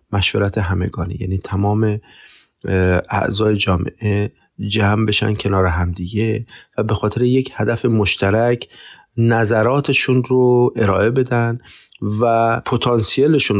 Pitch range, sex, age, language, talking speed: 100-125 Hz, male, 30-49, Persian, 100 wpm